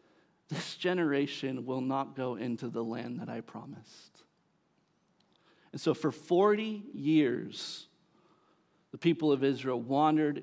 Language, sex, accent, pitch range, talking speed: English, male, American, 125-165 Hz, 120 wpm